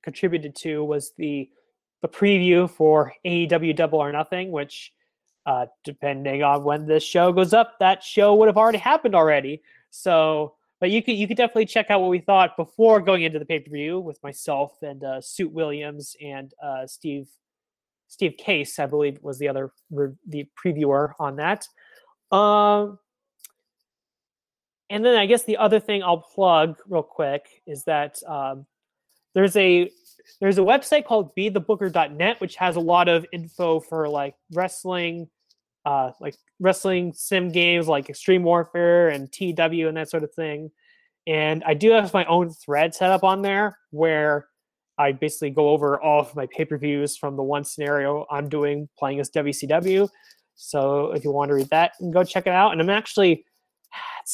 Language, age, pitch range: English, 20-39, 145-190 Hz